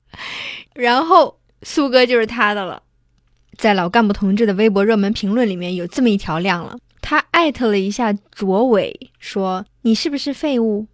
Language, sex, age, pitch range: Chinese, female, 20-39, 200-265 Hz